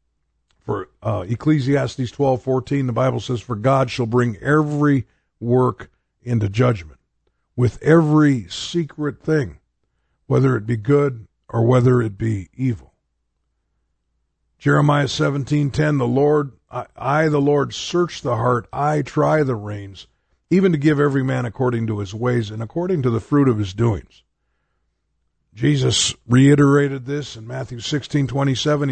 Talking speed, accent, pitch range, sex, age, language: 135 wpm, American, 110-145 Hz, male, 50-69, English